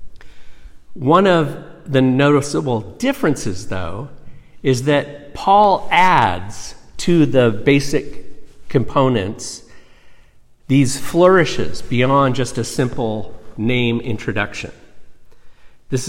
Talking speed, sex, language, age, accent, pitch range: 85 wpm, male, English, 50-69, American, 110-150 Hz